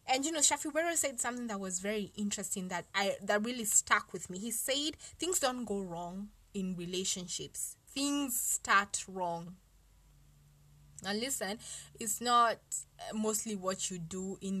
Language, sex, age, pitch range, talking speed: English, female, 20-39, 185-230 Hz, 150 wpm